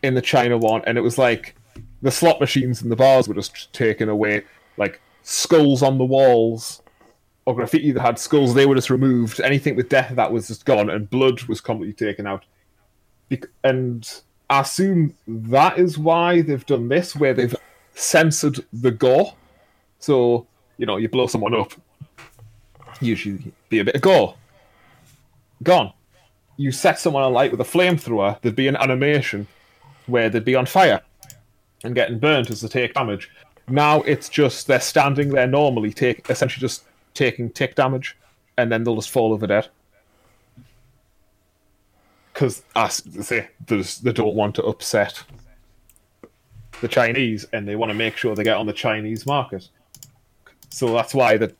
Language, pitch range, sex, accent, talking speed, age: English, 110-135 Hz, male, British, 165 wpm, 20-39